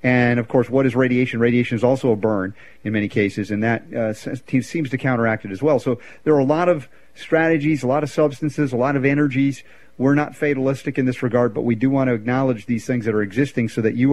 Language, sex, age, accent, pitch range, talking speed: English, male, 40-59, American, 120-145 Hz, 245 wpm